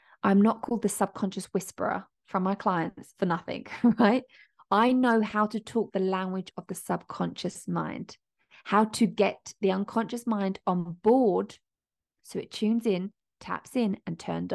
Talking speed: 160 wpm